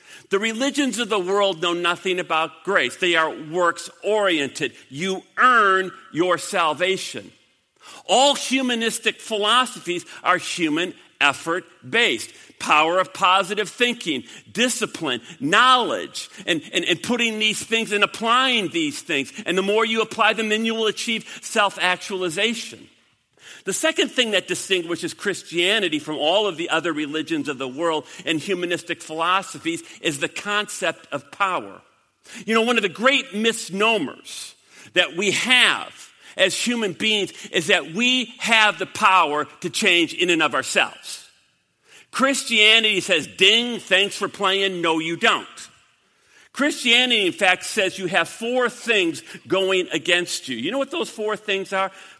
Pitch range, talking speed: 175-225 Hz, 145 wpm